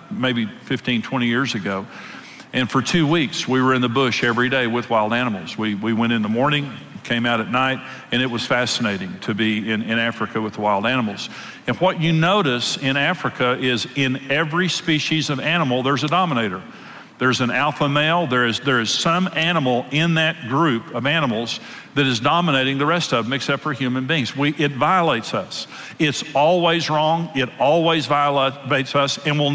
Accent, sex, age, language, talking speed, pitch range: American, male, 50-69, English, 195 wpm, 125-160 Hz